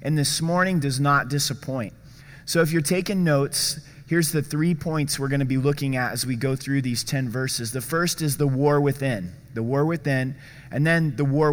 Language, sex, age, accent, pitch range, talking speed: English, male, 30-49, American, 135-150 Hz, 215 wpm